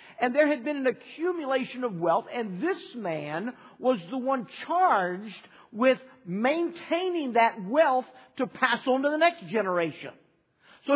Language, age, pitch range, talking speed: English, 50-69, 200-265 Hz, 150 wpm